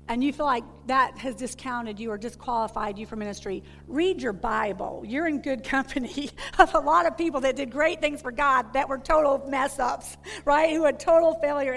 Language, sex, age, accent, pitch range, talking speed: English, female, 50-69, American, 235-315 Hz, 205 wpm